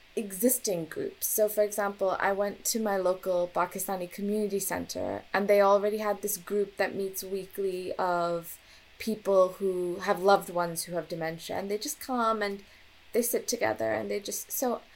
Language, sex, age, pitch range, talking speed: English, female, 10-29, 185-220 Hz, 175 wpm